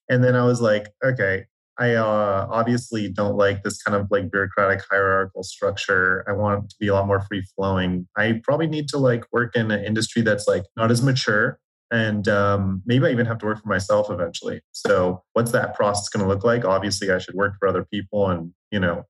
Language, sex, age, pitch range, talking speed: English, male, 30-49, 100-125 Hz, 225 wpm